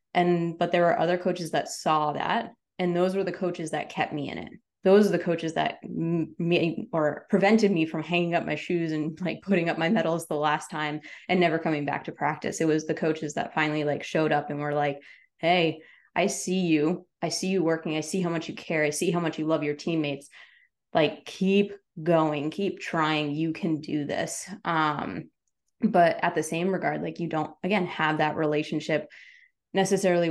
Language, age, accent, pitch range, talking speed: English, 20-39, American, 155-180 Hz, 210 wpm